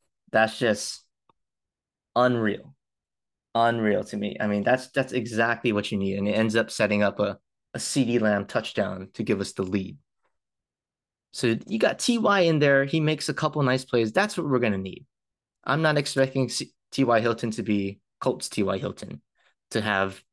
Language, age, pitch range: English, 20-39, 105-130 Hz